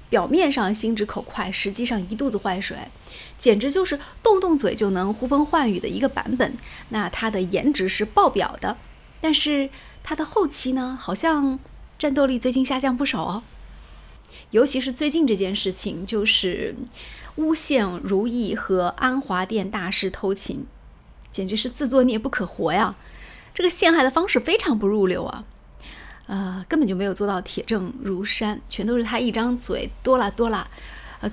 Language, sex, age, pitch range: Chinese, female, 20-39, 200-275 Hz